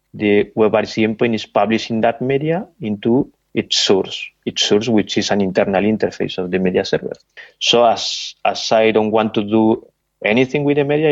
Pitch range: 100-120 Hz